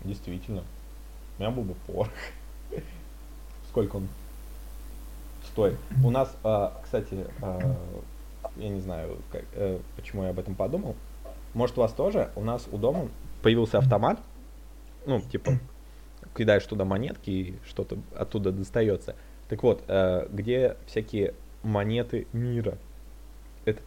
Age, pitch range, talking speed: 20-39, 95-115 Hz, 130 wpm